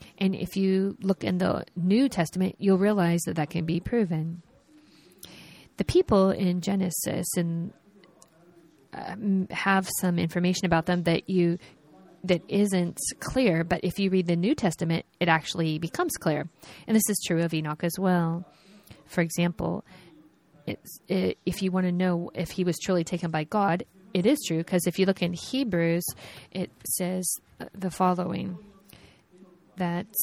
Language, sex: Japanese, female